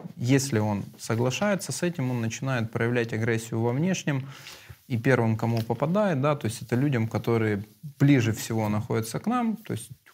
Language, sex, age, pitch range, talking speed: Russian, male, 20-39, 110-140 Hz, 160 wpm